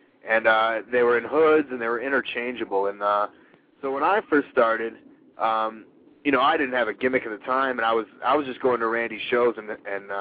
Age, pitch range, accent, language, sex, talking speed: 30-49, 115-140 Hz, American, English, male, 235 wpm